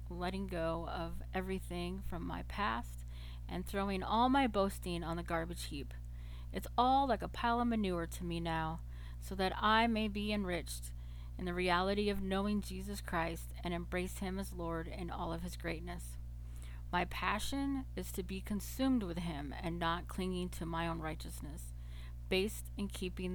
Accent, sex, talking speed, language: American, female, 170 wpm, English